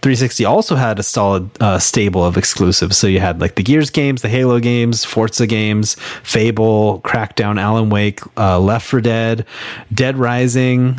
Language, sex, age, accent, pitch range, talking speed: English, male, 30-49, American, 100-125 Hz, 170 wpm